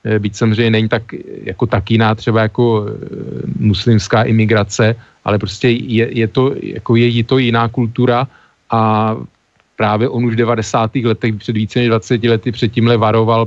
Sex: male